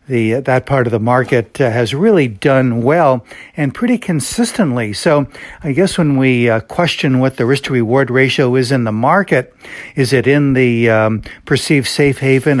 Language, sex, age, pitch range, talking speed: English, male, 60-79, 120-145 Hz, 175 wpm